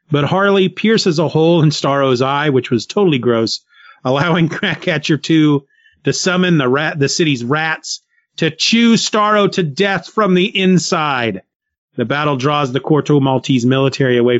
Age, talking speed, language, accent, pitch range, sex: 30-49, 160 wpm, English, American, 125-170 Hz, male